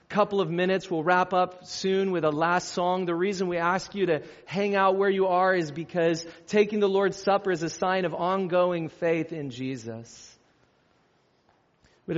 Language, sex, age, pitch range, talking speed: English, male, 40-59, 145-195 Hz, 180 wpm